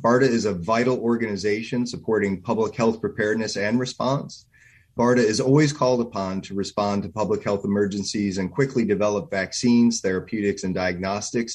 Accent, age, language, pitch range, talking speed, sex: American, 30-49, English, 100-120 Hz, 150 wpm, male